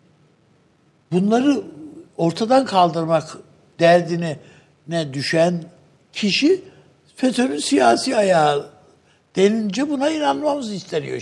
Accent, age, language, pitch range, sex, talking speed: native, 60-79, Turkish, 155-220 Hz, male, 75 wpm